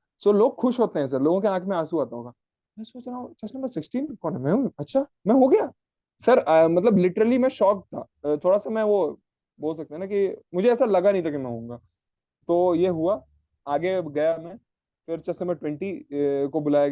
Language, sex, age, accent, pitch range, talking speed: Hindi, male, 20-39, native, 150-195 Hz, 220 wpm